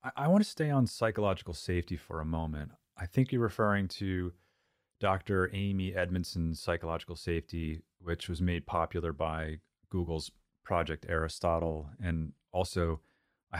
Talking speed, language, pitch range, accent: 135 wpm, English, 80-100 Hz, American